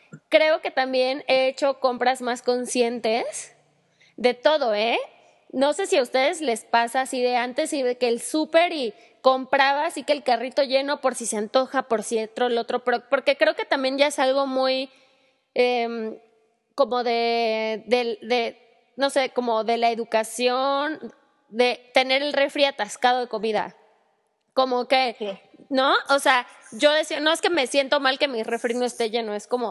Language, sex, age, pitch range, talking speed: Spanish, female, 20-39, 235-285 Hz, 180 wpm